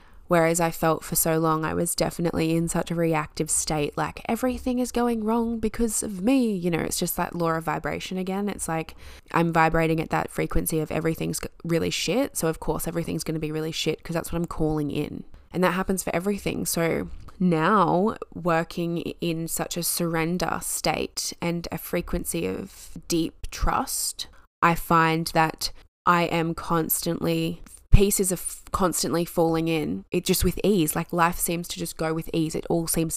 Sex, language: female, English